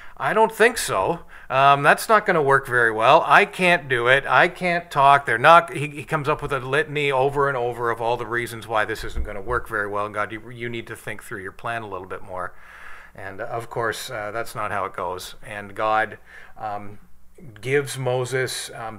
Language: English